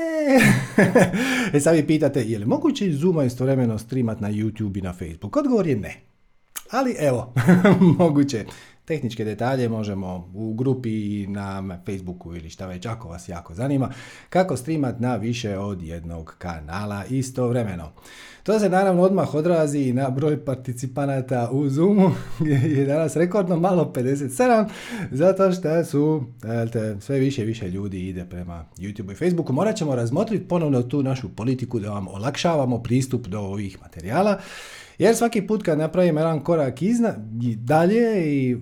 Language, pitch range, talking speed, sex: Croatian, 110-165 Hz, 150 wpm, male